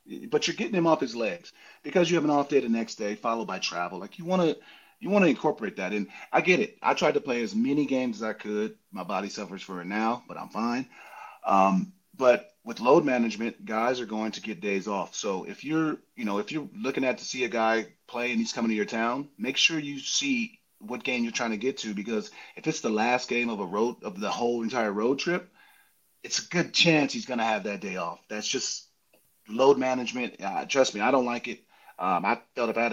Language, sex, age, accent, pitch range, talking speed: English, male, 30-49, American, 115-150 Hz, 250 wpm